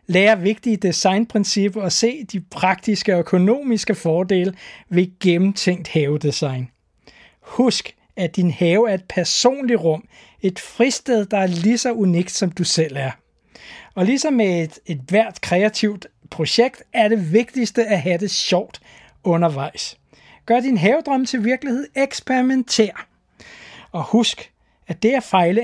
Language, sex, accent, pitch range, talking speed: Danish, male, native, 175-235 Hz, 140 wpm